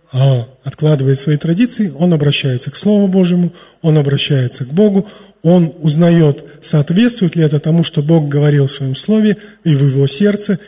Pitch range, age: 140-175 Hz, 20-39